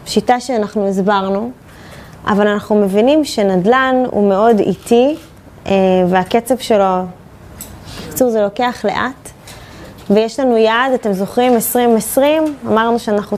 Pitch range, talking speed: 205-255 Hz, 115 wpm